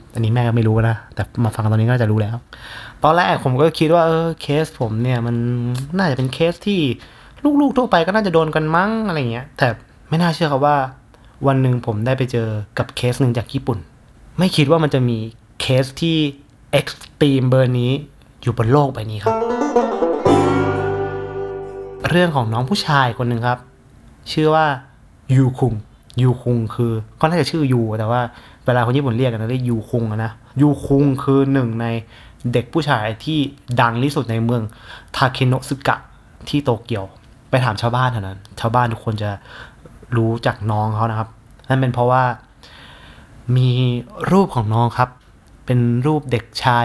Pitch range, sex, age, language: 115-140 Hz, male, 20-39, Thai